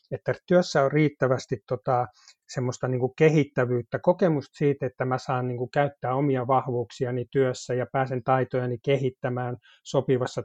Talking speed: 130 wpm